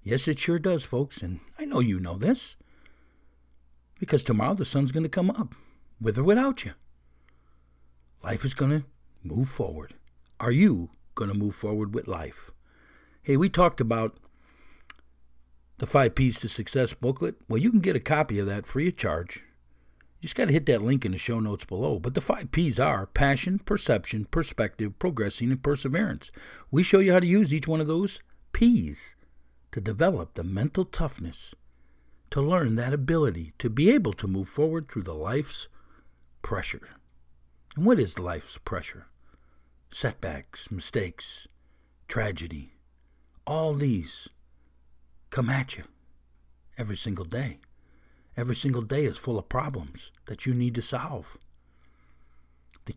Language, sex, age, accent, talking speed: English, male, 60-79, American, 160 wpm